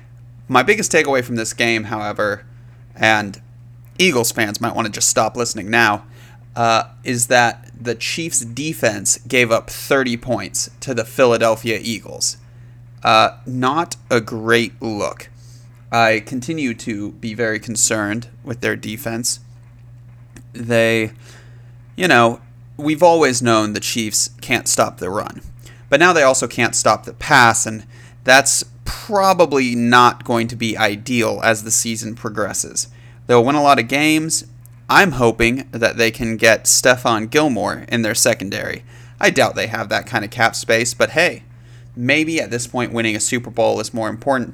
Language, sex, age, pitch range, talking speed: English, male, 30-49, 115-120 Hz, 155 wpm